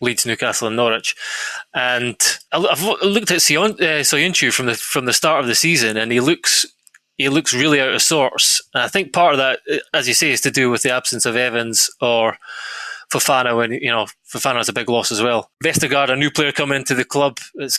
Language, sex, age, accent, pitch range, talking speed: English, male, 20-39, British, 120-145 Hz, 215 wpm